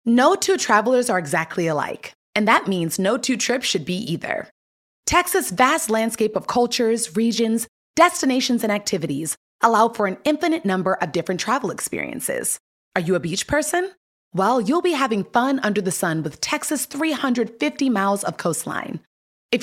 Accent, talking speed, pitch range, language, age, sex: American, 160 wpm, 195-275 Hz, English, 30-49, female